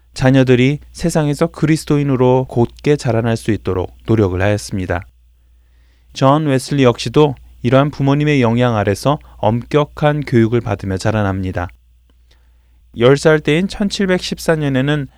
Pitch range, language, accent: 100-145 Hz, Korean, native